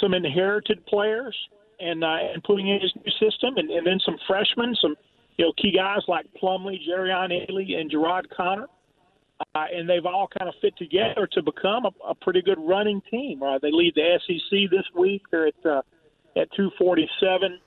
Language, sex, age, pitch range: English, male, 40-59, 160-190 Hz